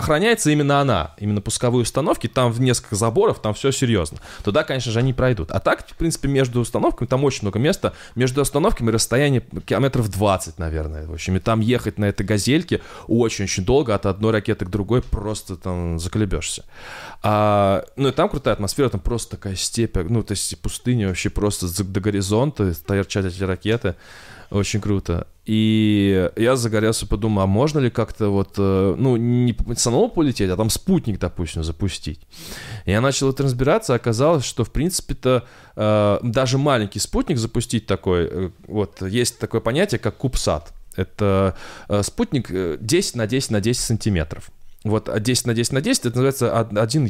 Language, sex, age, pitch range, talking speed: Russian, male, 20-39, 100-125 Hz, 165 wpm